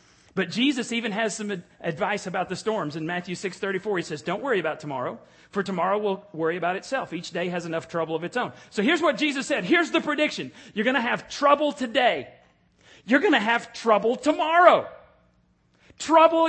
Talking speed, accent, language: 195 wpm, American, English